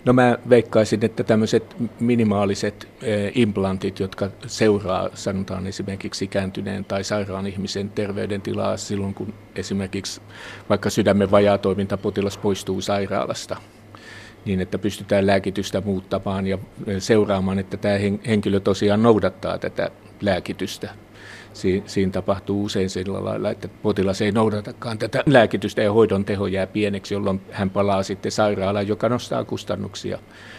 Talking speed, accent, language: 125 wpm, native, Finnish